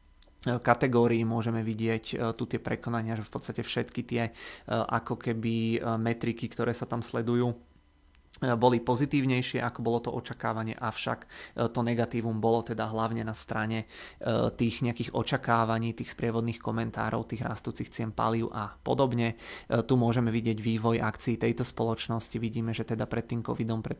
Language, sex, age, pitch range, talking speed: Czech, male, 30-49, 110-120 Hz, 145 wpm